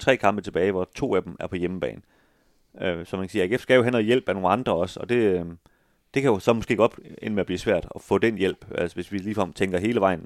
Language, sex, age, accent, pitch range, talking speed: Danish, male, 30-49, native, 90-110 Hz, 290 wpm